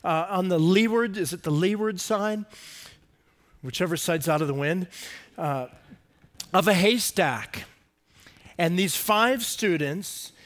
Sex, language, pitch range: male, English, 180-235 Hz